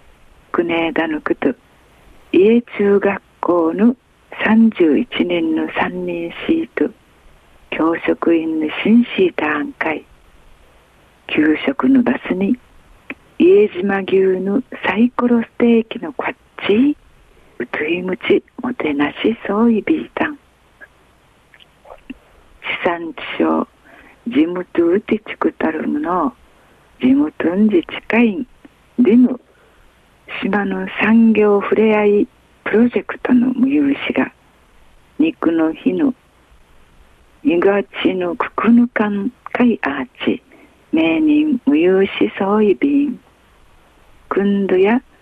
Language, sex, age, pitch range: Japanese, female, 50-69, 180-275 Hz